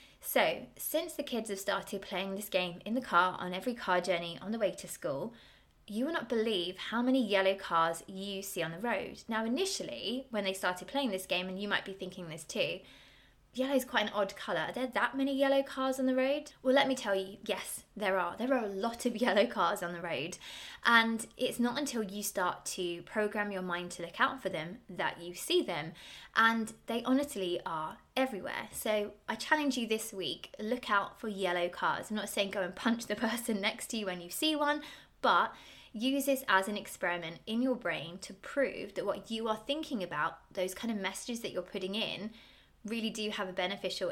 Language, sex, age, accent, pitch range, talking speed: English, female, 20-39, British, 185-245 Hz, 220 wpm